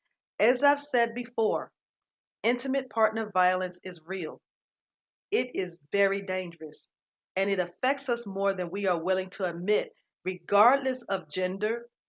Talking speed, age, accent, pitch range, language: 135 wpm, 40-59, American, 180-225 Hz, English